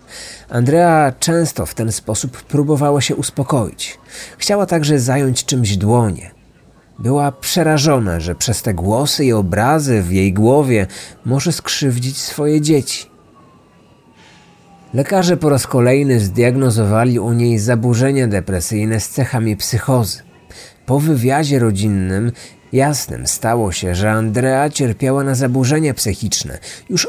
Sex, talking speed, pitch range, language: male, 115 wpm, 110-145 Hz, Polish